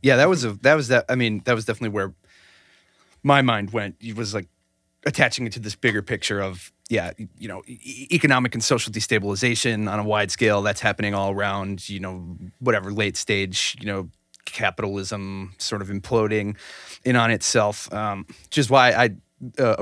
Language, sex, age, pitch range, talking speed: English, male, 30-49, 95-115 Hz, 190 wpm